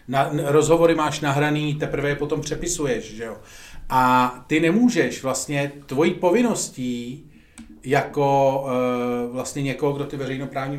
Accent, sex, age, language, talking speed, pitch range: native, male, 40-59, Czech, 115 wpm, 130-175 Hz